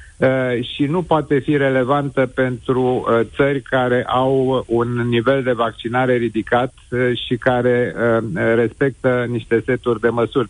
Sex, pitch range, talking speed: male, 125-150 Hz, 145 wpm